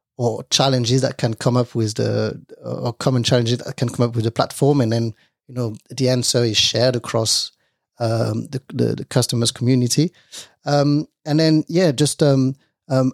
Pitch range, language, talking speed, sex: 115-135 Hz, English, 185 wpm, male